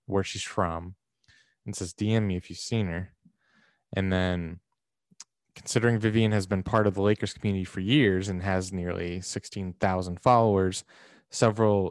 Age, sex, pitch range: 20-39, male, 90-110 Hz